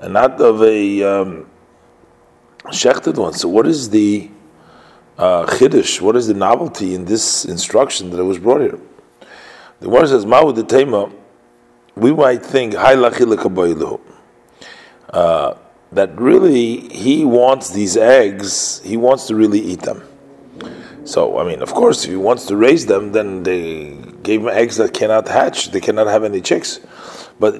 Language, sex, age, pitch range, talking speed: English, male, 40-59, 90-125 Hz, 150 wpm